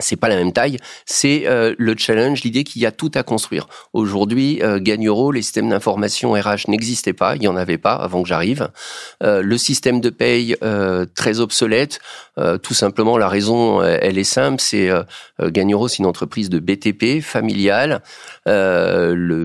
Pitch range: 100-120 Hz